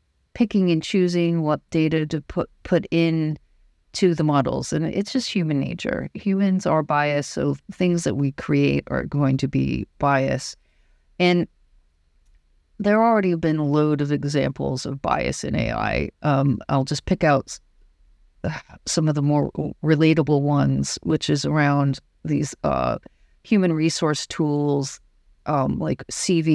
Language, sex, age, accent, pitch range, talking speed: English, female, 50-69, American, 135-165 Hz, 150 wpm